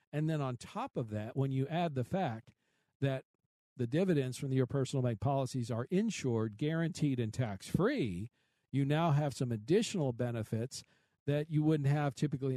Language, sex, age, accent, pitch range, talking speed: English, male, 50-69, American, 120-150 Hz, 165 wpm